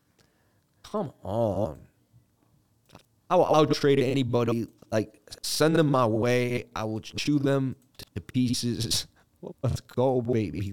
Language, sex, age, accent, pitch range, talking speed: English, male, 20-39, American, 105-130 Hz, 110 wpm